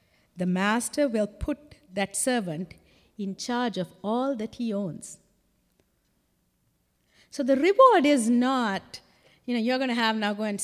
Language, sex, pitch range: English, female, 190-255 Hz